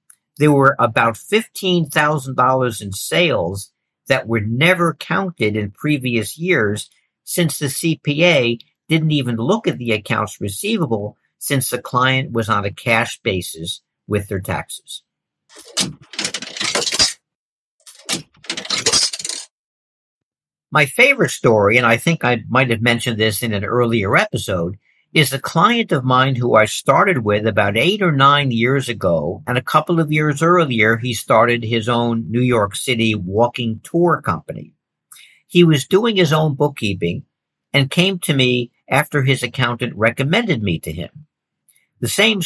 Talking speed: 140 wpm